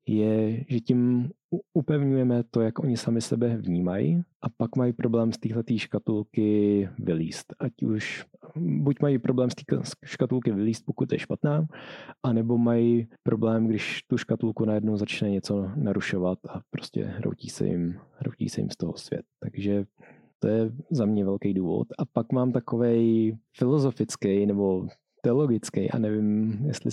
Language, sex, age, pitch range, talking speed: Czech, male, 20-39, 110-125 Hz, 150 wpm